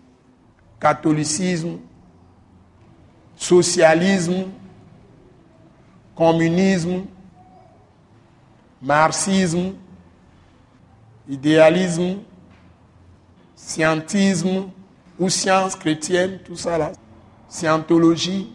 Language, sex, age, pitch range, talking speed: French, male, 60-79, 135-170 Hz, 40 wpm